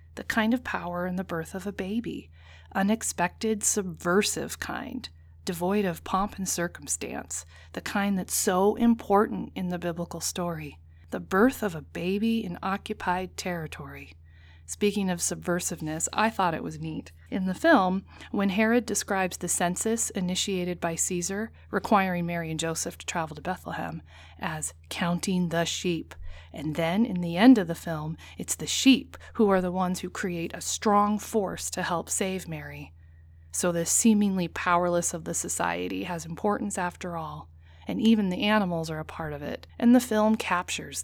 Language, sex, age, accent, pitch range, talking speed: English, female, 30-49, American, 165-210 Hz, 165 wpm